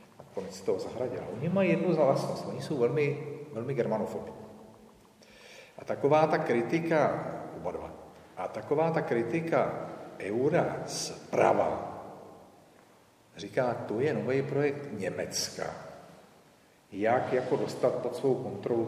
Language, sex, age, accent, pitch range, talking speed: Czech, male, 50-69, native, 110-180 Hz, 110 wpm